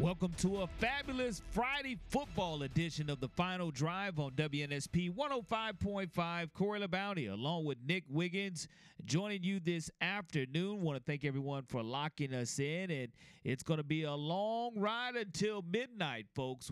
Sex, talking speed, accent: male, 155 wpm, American